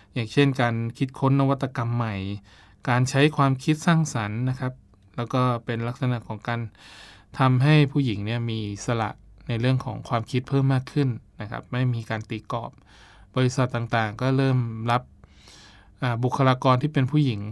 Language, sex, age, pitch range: Thai, male, 20-39, 110-135 Hz